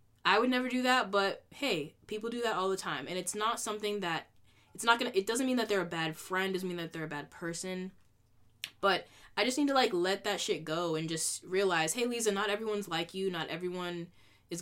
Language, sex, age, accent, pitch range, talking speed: English, female, 10-29, American, 155-200 Hz, 245 wpm